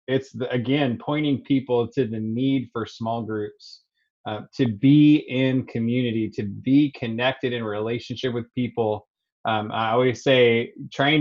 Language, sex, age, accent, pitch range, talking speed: English, male, 20-39, American, 115-135 Hz, 145 wpm